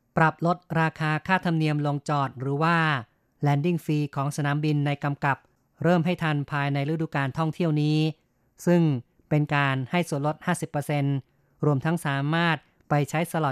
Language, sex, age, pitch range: Thai, female, 30-49, 140-160 Hz